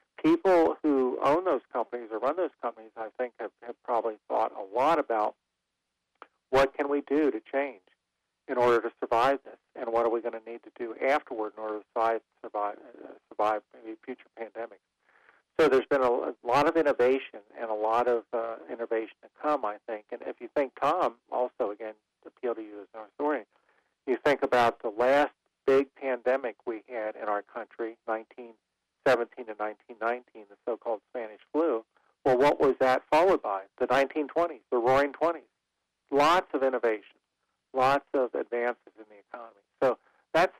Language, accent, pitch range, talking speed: English, American, 110-130 Hz, 180 wpm